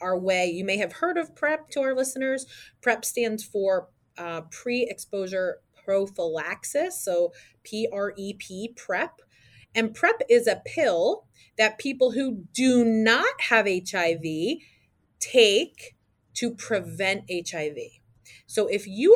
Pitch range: 175-230 Hz